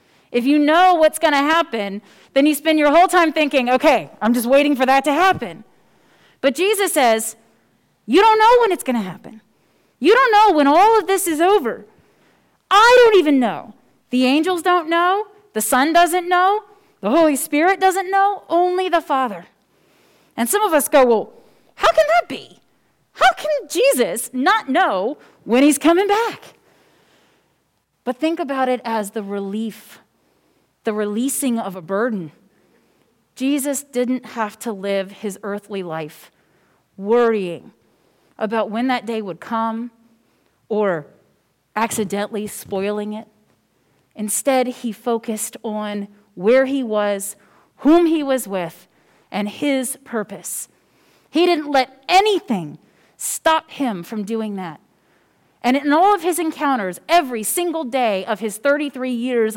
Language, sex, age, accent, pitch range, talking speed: English, female, 30-49, American, 215-330 Hz, 150 wpm